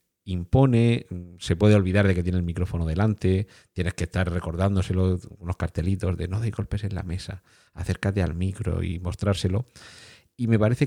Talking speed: 170 wpm